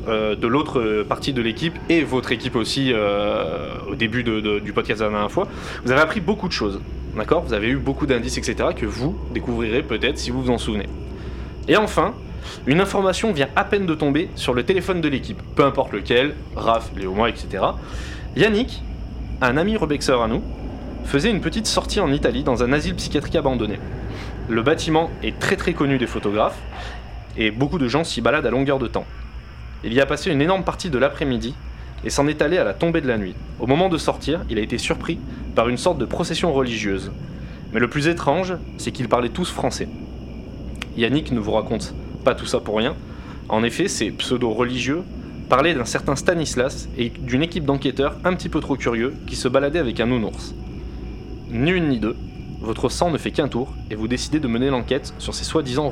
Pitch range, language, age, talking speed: 105-145 Hz, French, 20-39, 205 wpm